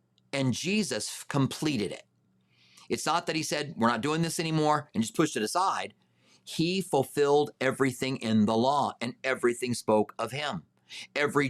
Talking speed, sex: 160 wpm, male